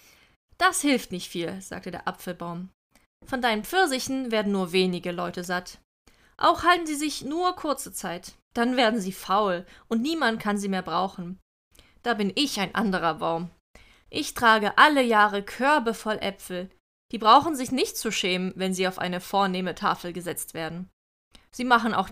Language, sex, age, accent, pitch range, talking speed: German, female, 20-39, German, 180-240 Hz, 170 wpm